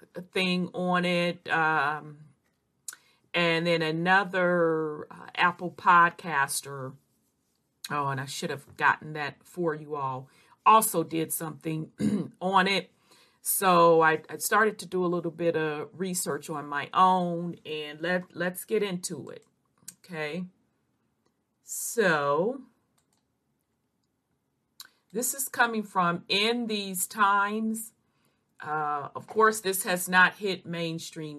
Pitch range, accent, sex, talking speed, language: 160-195 Hz, American, female, 115 wpm, English